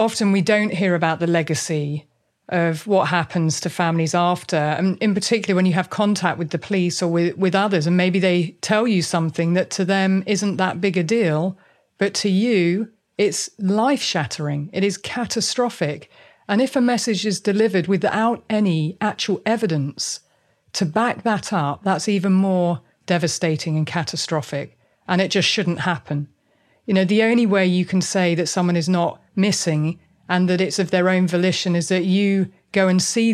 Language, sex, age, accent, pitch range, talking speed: English, female, 40-59, British, 170-200 Hz, 180 wpm